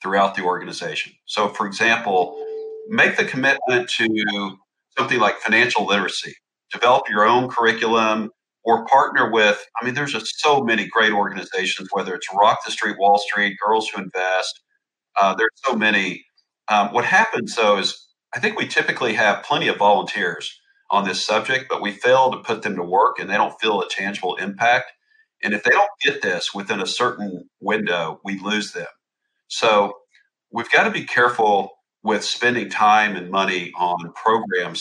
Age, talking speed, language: 40-59, 170 wpm, English